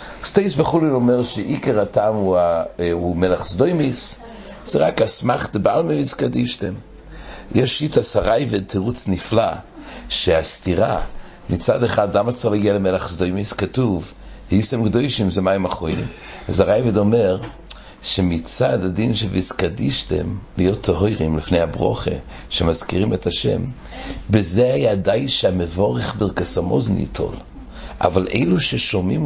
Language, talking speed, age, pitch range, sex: English, 110 wpm, 60-79, 85-110 Hz, male